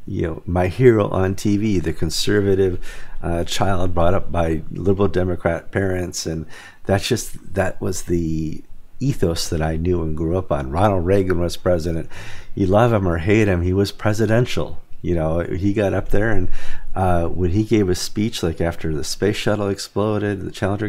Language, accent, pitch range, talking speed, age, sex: English, American, 85-100 Hz, 185 wpm, 50-69, male